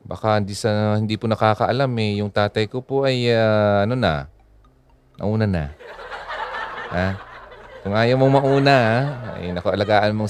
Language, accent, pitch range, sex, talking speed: Filipino, native, 100-135 Hz, male, 145 wpm